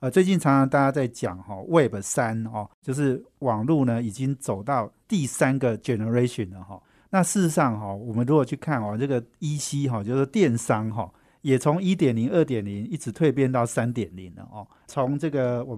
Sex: male